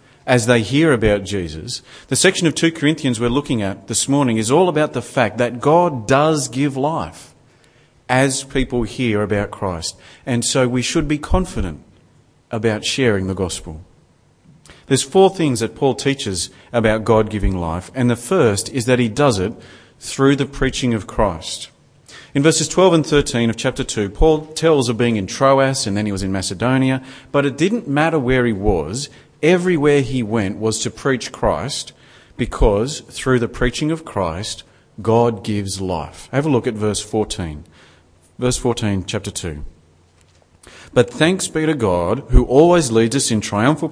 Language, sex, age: English, male, 40-59